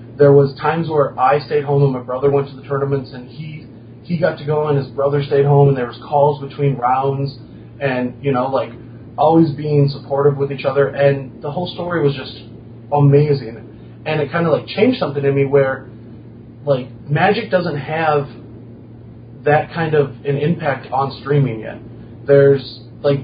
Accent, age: American, 30-49